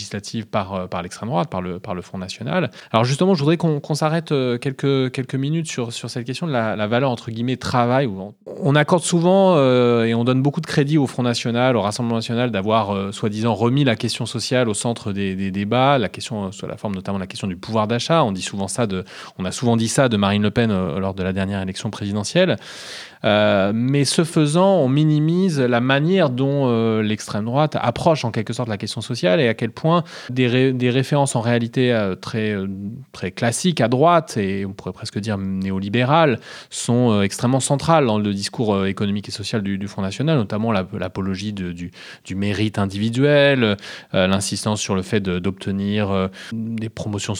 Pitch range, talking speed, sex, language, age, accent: 100-130 Hz, 200 wpm, male, French, 30-49, French